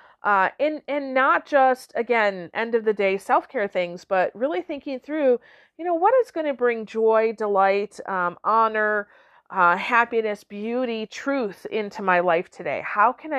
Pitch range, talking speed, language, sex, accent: 205-275 Hz, 165 wpm, English, female, American